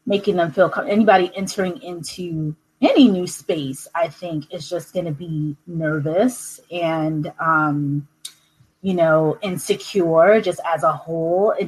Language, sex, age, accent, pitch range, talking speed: English, female, 20-39, American, 170-210 Hz, 145 wpm